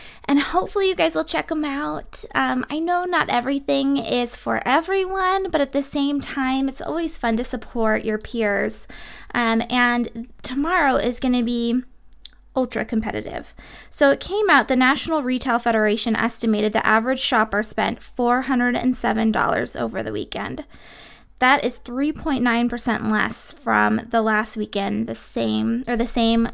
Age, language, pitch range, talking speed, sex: 20-39, English, 230-280 Hz, 150 wpm, female